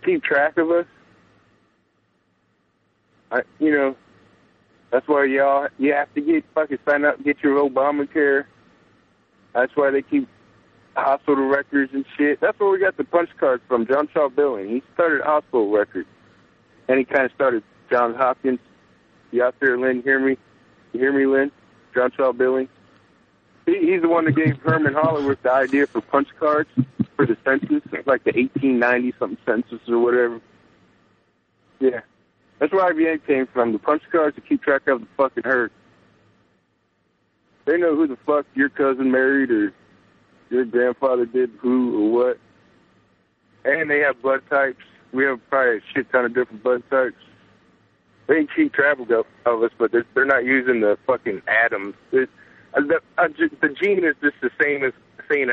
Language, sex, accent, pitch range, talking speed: English, male, American, 125-160 Hz, 170 wpm